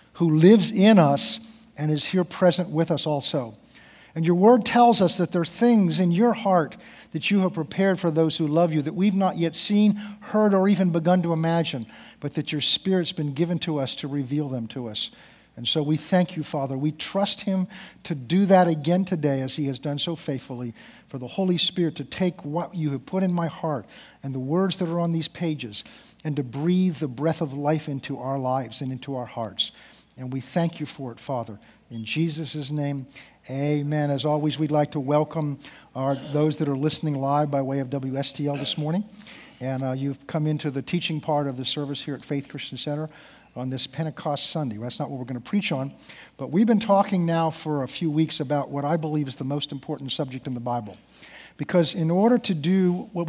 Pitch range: 140-175 Hz